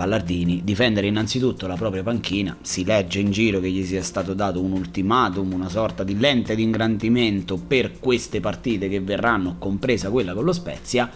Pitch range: 95-135 Hz